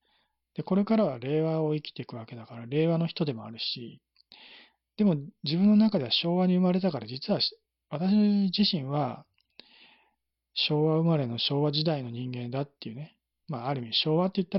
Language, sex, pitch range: Japanese, male, 120-165 Hz